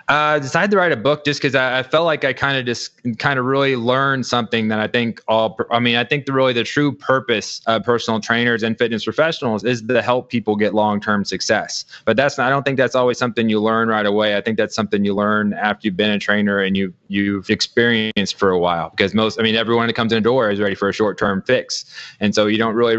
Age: 20-39